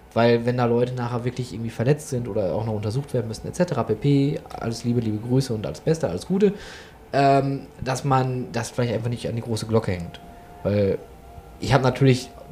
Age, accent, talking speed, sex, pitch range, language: 20-39, German, 200 wpm, male, 110-145 Hz, German